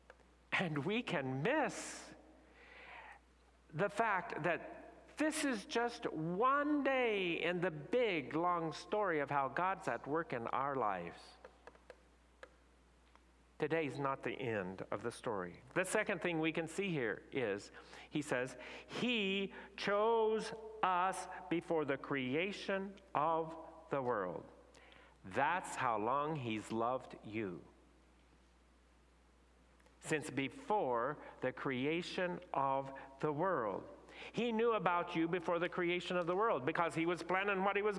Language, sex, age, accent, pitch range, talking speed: English, male, 50-69, American, 140-195 Hz, 130 wpm